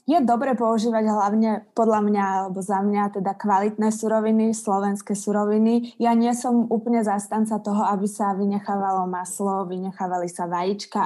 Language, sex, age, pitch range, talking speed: Slovak, female, 20-39, 195-220 Hz, 145 wpm